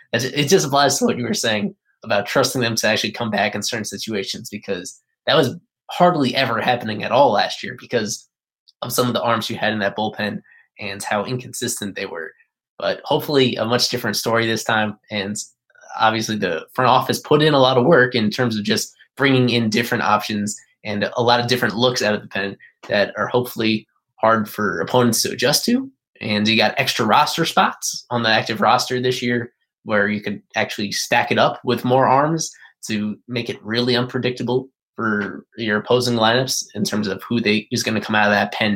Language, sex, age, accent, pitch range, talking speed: English, male, 20-39, American, 105-125 Hz, 205 wpm